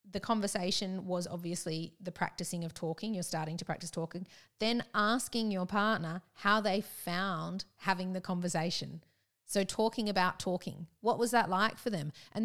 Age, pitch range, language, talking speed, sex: 30-49, 175-220 Hz, English, 165 wpm, female